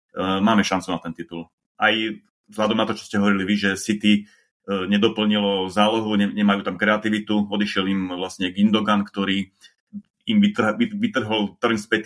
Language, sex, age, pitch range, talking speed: Slovak, male, 30-49, 95-105 Hz, 165 wpm